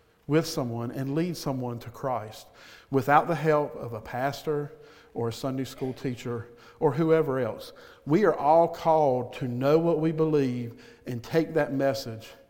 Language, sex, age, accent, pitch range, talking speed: English, male, 50-69, American, 120-155 Hz, 165 wpm